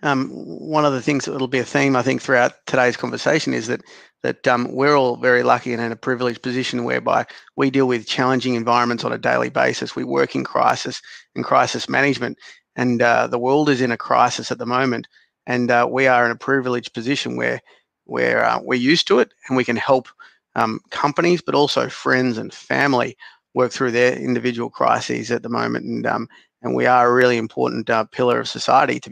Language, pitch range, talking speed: English, 120-130 Hz, 210 wpm